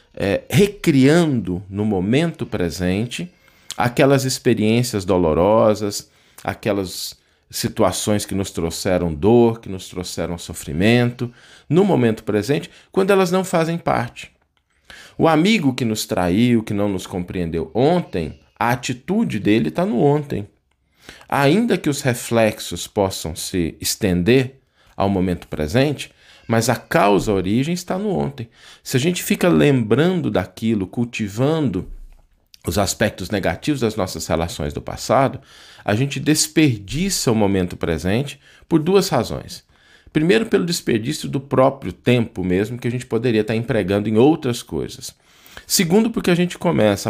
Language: Portuguese